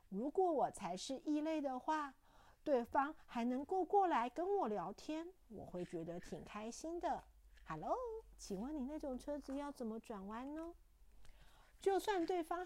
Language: Chinese